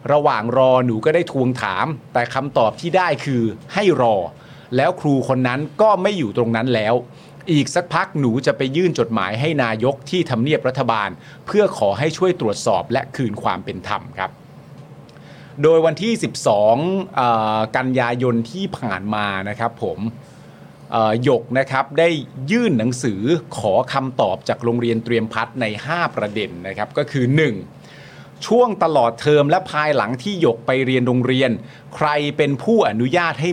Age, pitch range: 30-49, 120-165 Hz